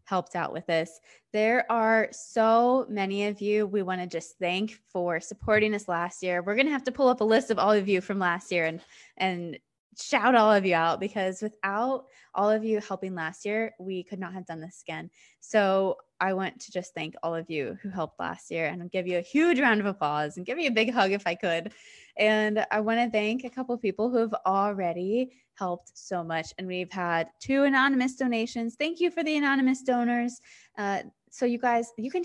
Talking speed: 225 wpm